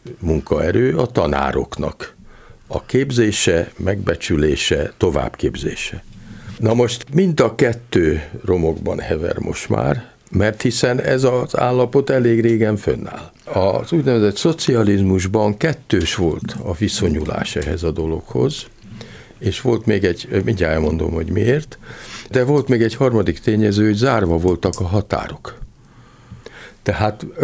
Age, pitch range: 60-79, 85-115 Hz